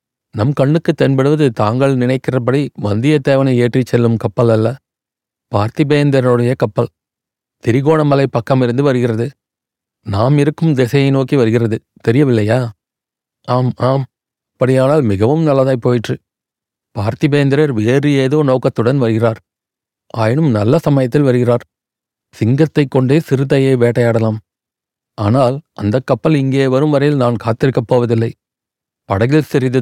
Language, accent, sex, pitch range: Tamil, native, male, 115-140 Hz